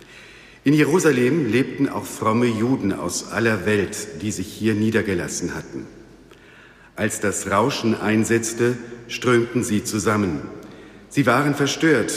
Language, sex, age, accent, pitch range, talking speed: German, male, 60-79, German, 105-130 Hz, 120 wpm